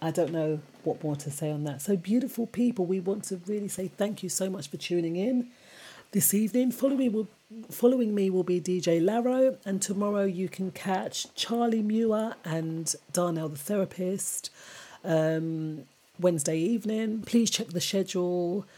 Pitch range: 165-215 Hz